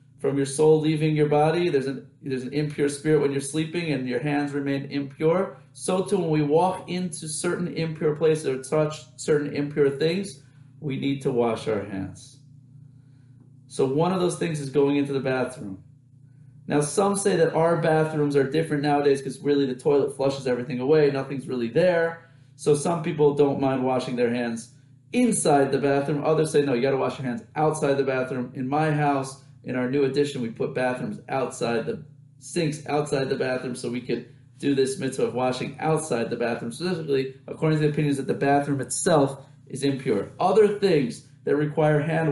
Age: 30-49